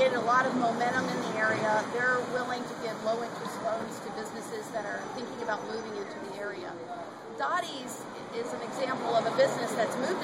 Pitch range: 230-265 Hz